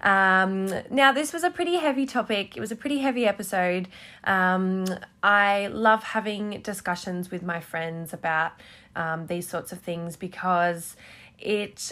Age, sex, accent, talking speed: 20-39, female, Australian, 150 wpm